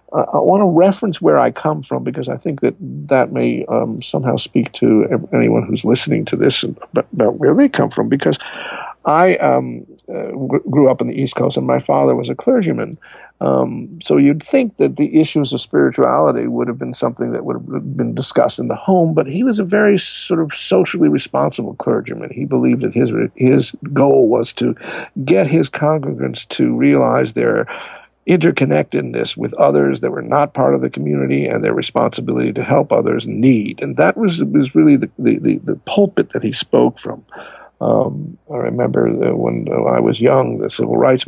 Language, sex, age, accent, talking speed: English, male, 50-69, American, 195 wpm